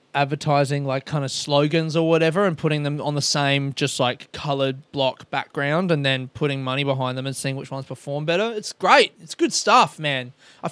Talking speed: 205 wpm